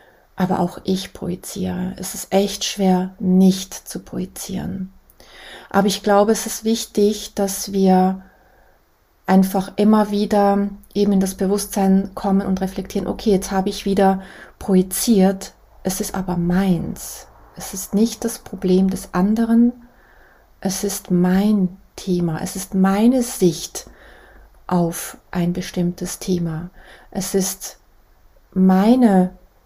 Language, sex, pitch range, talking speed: German, female, 185-205 Hz, 125 wpm